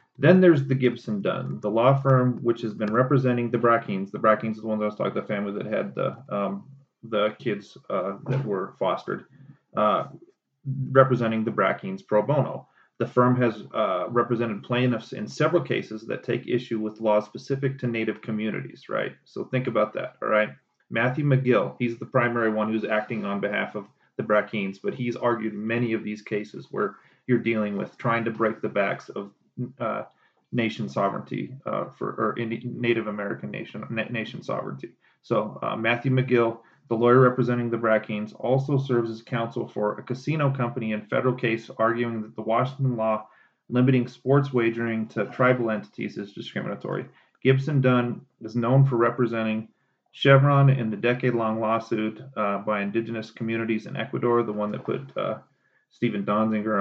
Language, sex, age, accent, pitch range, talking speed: English, male, 30-49, American, 110-125 Hz, 175 wpm